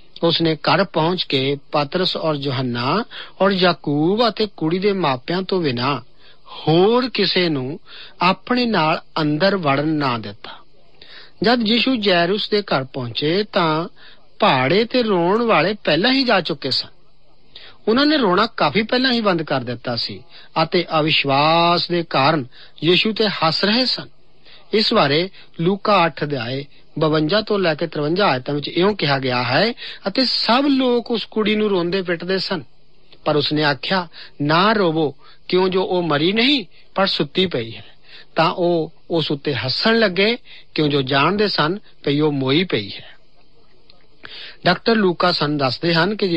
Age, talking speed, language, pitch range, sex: 50-69, 105 wpm, Punjabi, 150-205 Hz, male